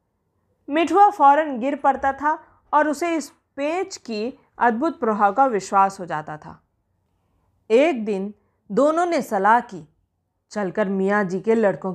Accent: native